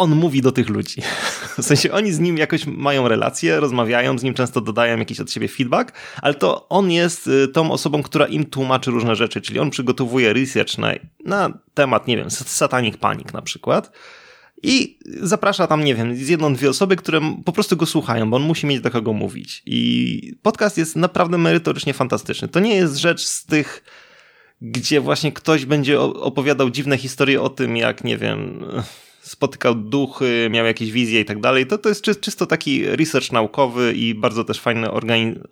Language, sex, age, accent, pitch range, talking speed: Polish, male, 20-39, native, 115-150 Hz, 190 wpm